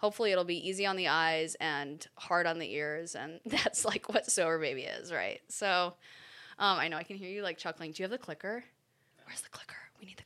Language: English